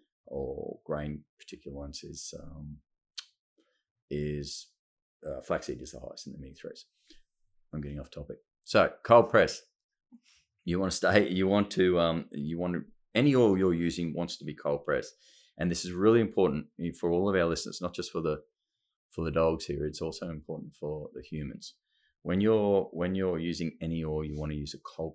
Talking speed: 190 wpm